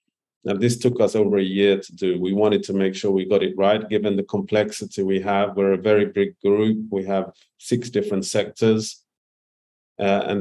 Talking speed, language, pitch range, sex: 200 wpm, English, 100-115 Hz, male